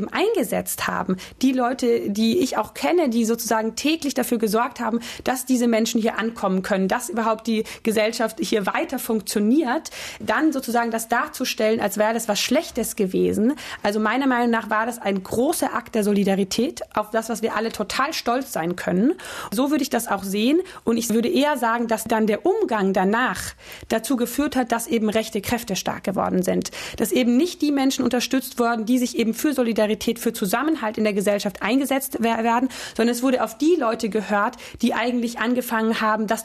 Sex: female